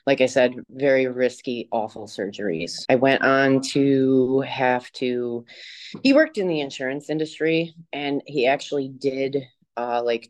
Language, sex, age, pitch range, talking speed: English, female, 30-49, 115-135 Hz, 145 wpm